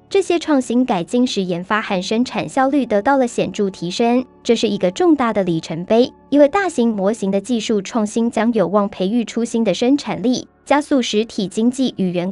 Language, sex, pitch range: Chinese, male, 200-255 Hz